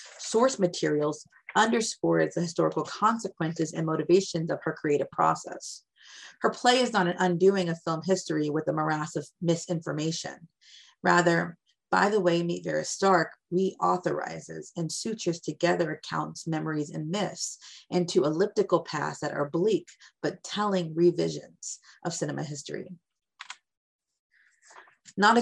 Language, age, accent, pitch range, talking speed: English, 30-49, American, 155-185 Hz, 125 wpm